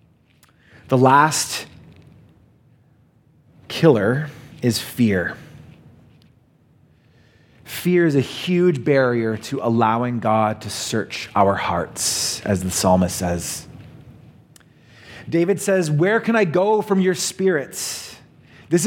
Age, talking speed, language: 30-49, 100 wpm, English